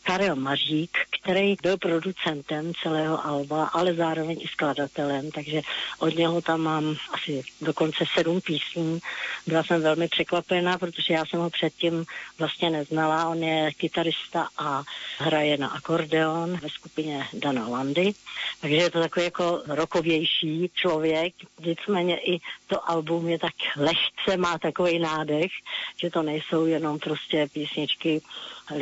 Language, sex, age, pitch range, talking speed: Slovak, female, 50-69, 155-175 Hz, 135 wpm